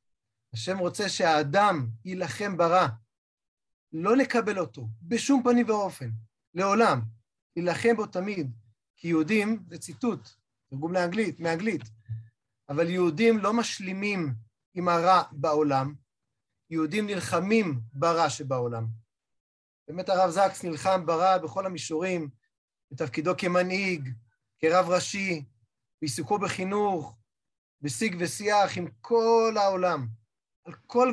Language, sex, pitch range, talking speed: Hebrew, male, 130-185 Hz, 100 wpm